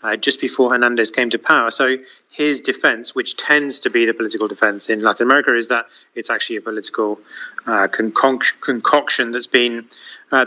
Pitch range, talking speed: 115-140 Hz, 190 wpm